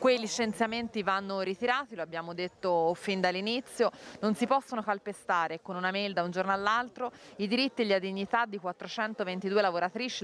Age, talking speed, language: 30-49, 165 wpm, Italian